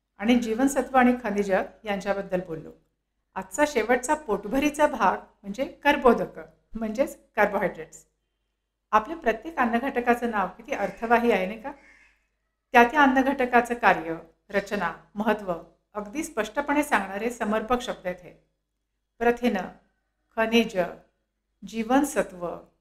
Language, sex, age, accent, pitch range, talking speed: Marathi, female, 60-79, native, 200-255 Hz, 100 wpm